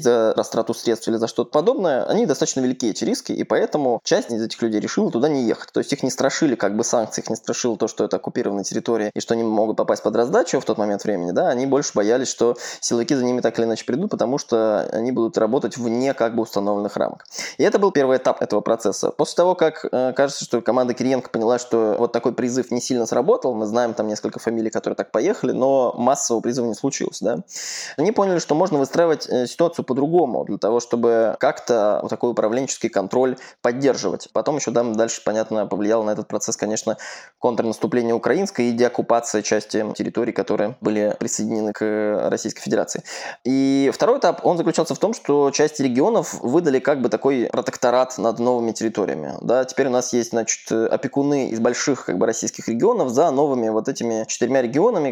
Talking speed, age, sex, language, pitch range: 200 wpm, 20-39, male, Russian, 110-130 Hz